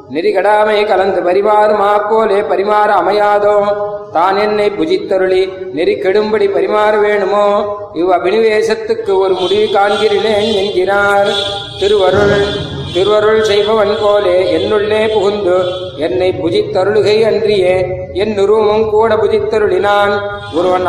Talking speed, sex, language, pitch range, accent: 95 wpm, male, Tamil, 190-215 Hz, native